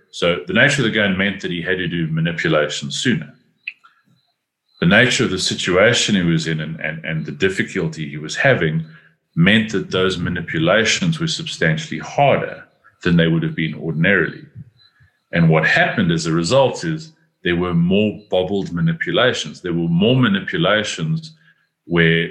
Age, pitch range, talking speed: 40-59, 80-115 Hz, 160 wpm